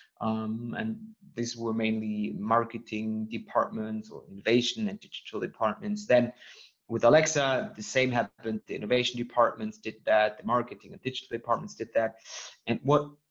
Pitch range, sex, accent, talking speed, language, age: 115-135 Hz, male, German, 145 wpm, English, 30-49